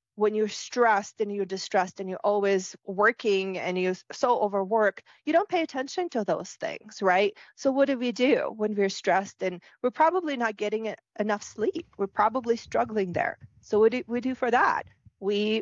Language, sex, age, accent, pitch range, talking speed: English, female, 30-49, American, 195-245 Hz, 190 wpm